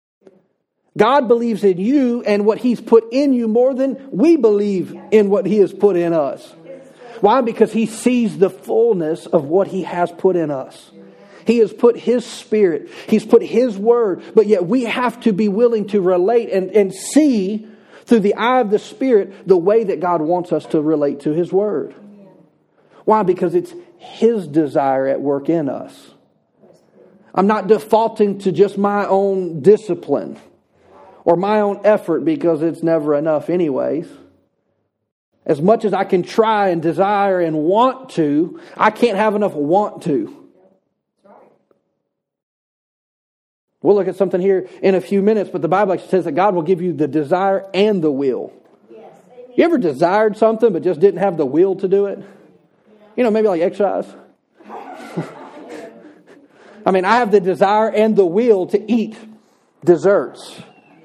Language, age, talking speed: English, 40-59, 165 wpm